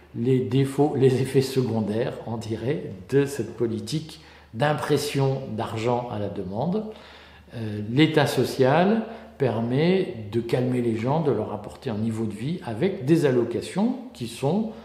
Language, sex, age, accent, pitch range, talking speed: French, male, 50-69, French, 120-170 Hz, 140 wpm